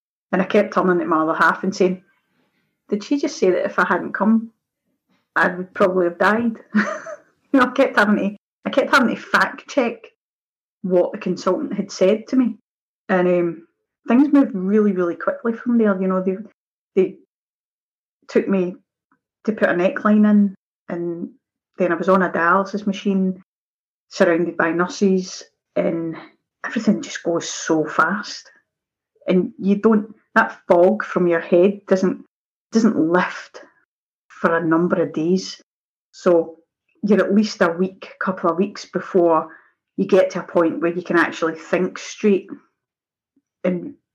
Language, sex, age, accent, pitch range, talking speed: English, female, 30-49, British, 175-210 Hz, 160 wpm